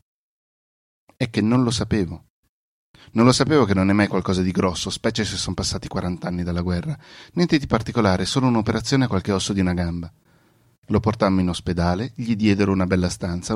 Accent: native